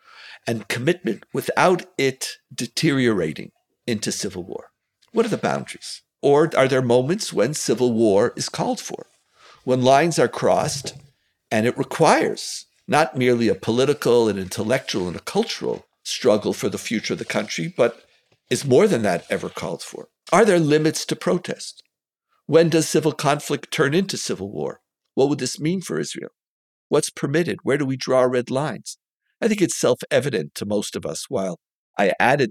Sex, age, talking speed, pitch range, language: male, 60-79, 170 wpm, 115-165 Hz, English